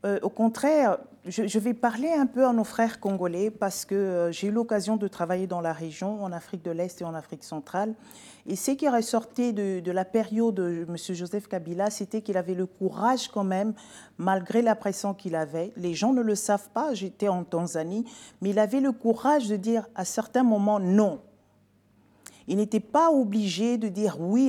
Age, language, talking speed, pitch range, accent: 40-59, French, 200 wpm, 185-235 Hz, French